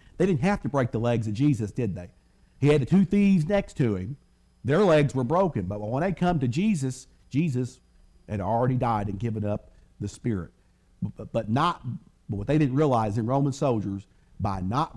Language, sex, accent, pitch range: English, male, American, 105-160 Hz